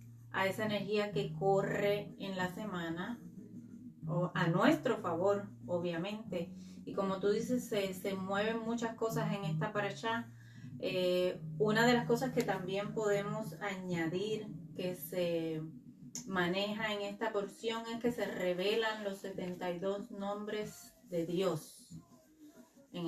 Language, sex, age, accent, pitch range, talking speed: Spanish, female, 30-49, American, 180-215 Hz, 125 wpm